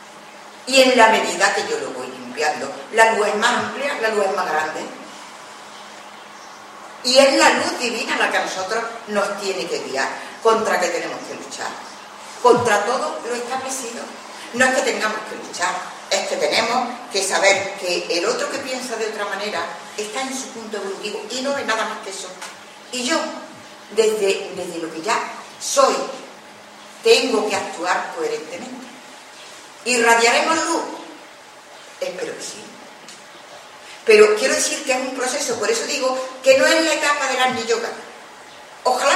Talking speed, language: 165 wpm, Spanish